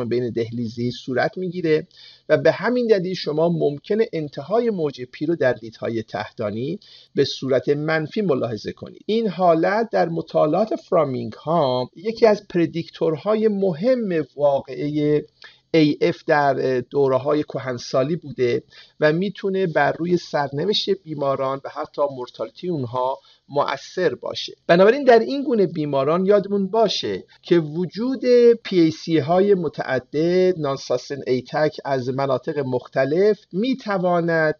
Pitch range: 135-185 Hz